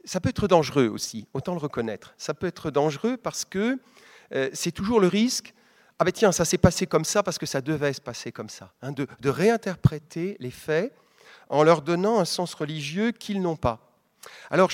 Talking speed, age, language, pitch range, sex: 210 wpm, 40-59, French, 145-205 Hz, male